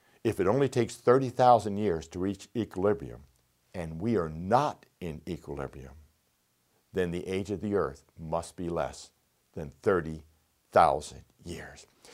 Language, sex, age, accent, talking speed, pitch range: English, male, 60-79, American, 135 wpm, 85-125 Hz